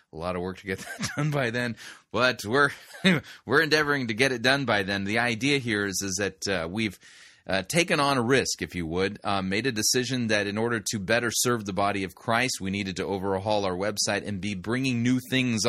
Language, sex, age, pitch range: English, male, 30-49, 95-120 Hz